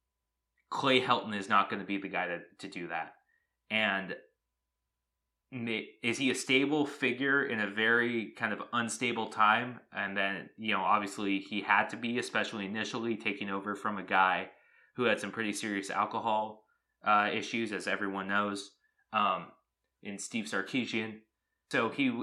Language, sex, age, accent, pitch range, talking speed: English, male, 20-39, American, 95-110 Hz, 155 wpm